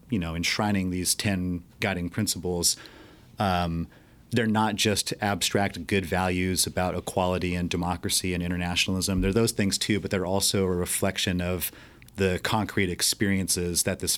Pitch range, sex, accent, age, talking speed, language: 90-105 Hz, male, American, 30-49, 150 wpm, English